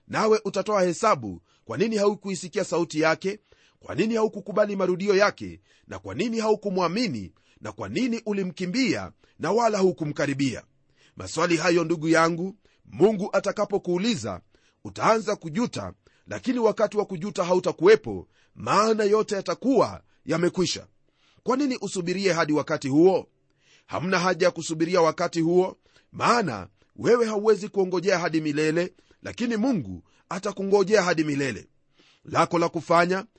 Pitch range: 170-210 Hz